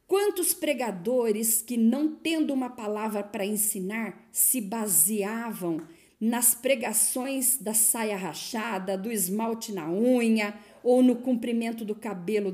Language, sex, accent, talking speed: Portuguese, female, Brazilian, 120 wpm